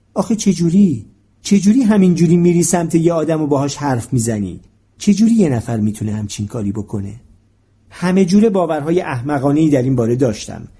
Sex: male